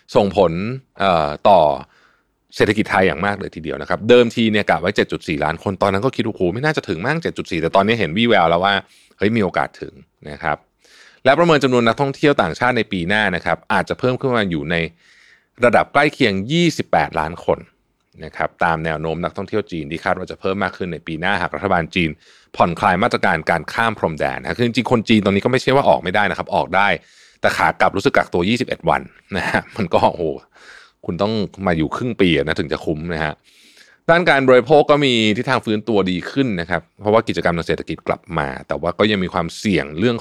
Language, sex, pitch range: Thai, male, 85-120 Hz